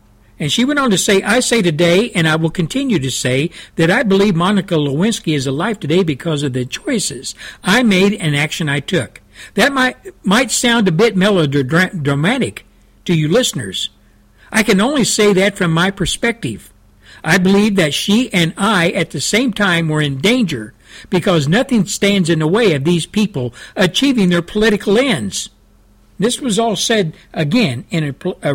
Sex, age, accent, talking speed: male, 60-79, American, 180 wpm